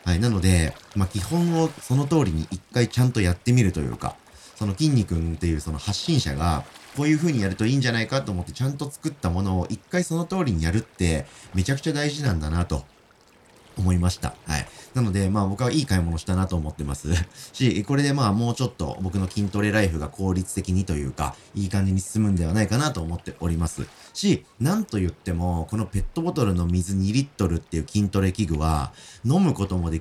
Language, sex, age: Japanese, male, 30-49